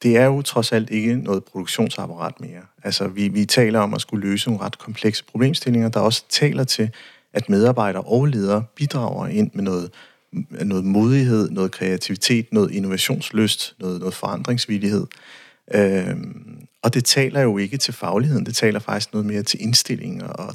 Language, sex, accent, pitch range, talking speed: Danish, male, native, 105-130 Hz, 170 wpm